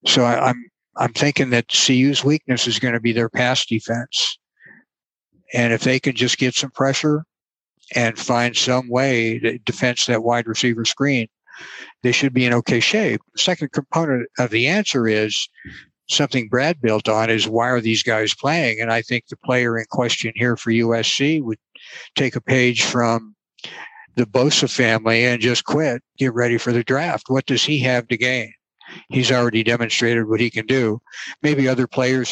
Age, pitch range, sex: 60-79, 115-135 Hz, male